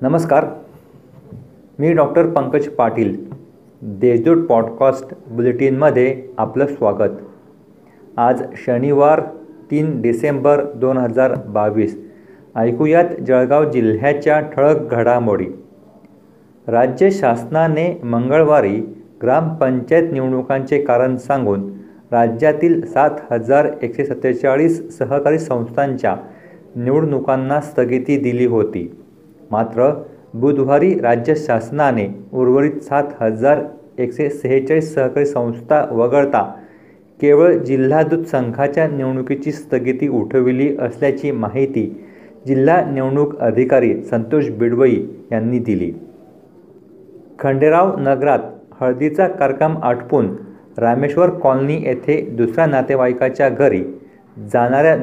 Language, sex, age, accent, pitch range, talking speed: Marathi, male, 40-59, native, 125-150 Hz, 80 wpm